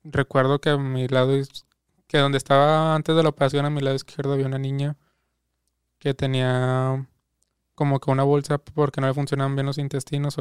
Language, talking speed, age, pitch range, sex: Spanish, 190 wpm, 20-39, 130-145 Hz, male